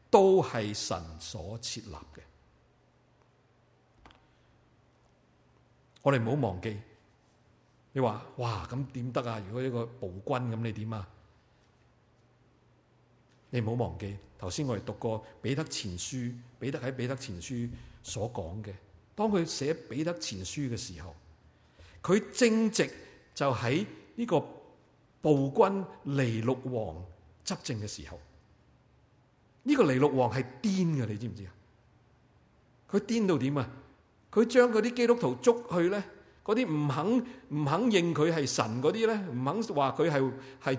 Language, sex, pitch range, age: Chinese, male, 110-160 Hz, 50-69